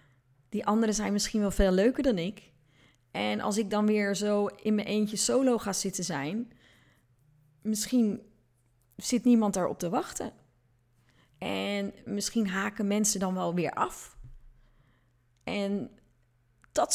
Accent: Dutch